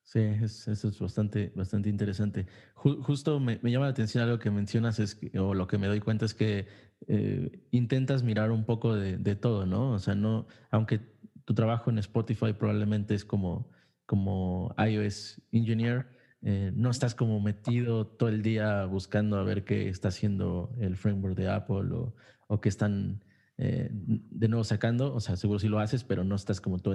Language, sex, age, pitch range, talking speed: Spanish, male, 20-39, 100-115 Hz, 195 wpm